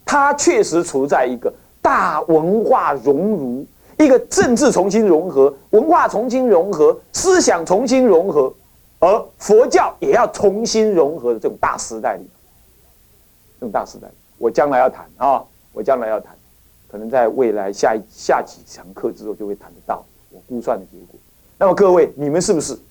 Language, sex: Chinese, male